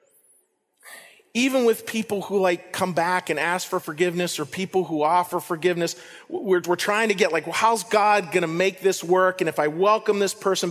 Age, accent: 40-59, American